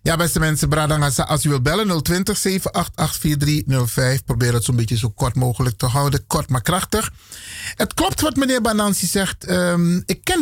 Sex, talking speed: male, 175 wpm